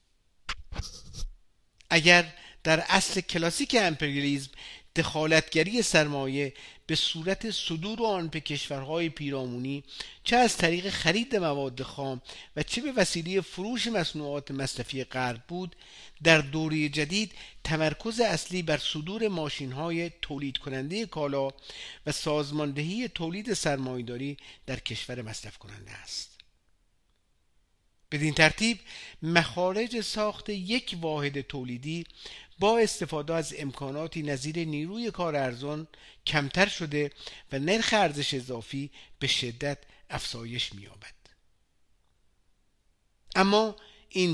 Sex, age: male, 50-69